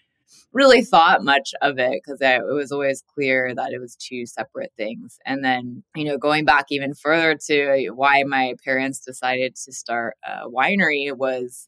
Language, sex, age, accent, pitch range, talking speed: English, female, 20-39, American, 130-145 Hz, 180 wpm